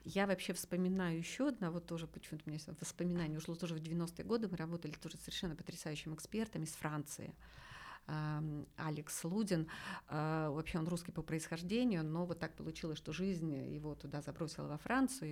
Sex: female